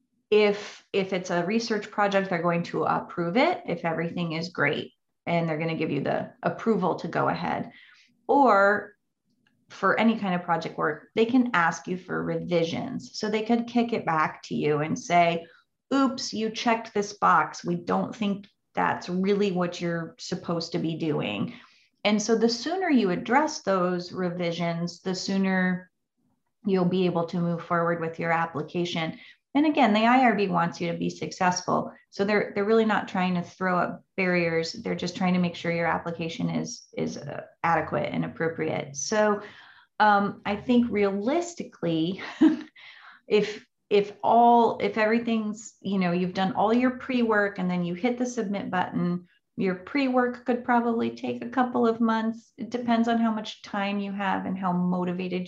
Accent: American